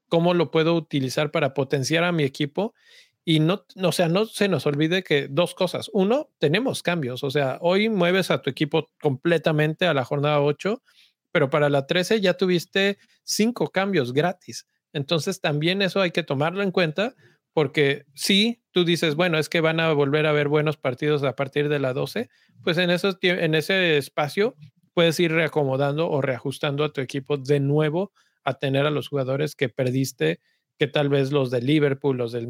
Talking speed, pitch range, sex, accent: 190 wpm, 140-175 Hz, male, Mexican